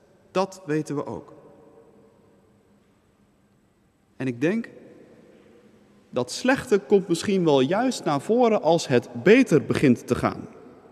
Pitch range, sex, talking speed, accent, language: 150-220 Hz, male, 115 wpm, Dutch, Dutch